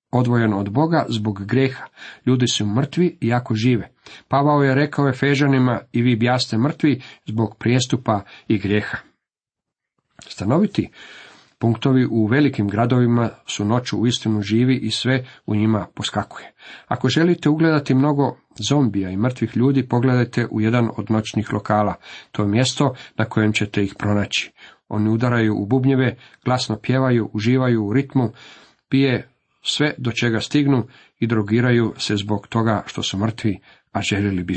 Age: 40-59